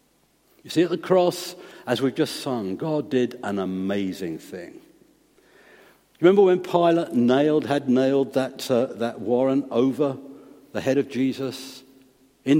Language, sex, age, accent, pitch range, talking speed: English, male, 60-79, British, 125-170 Hz, 145 wpm